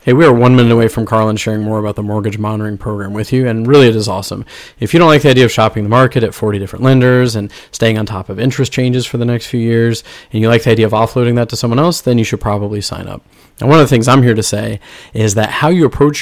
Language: English